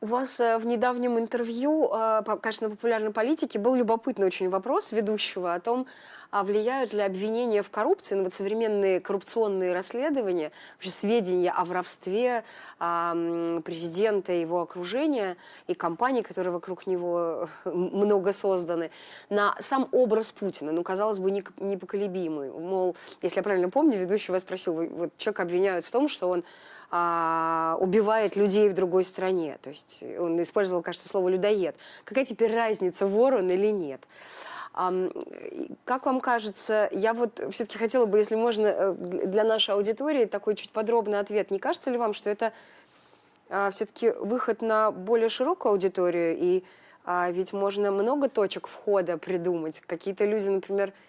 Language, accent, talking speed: Russian, native, 140 wpm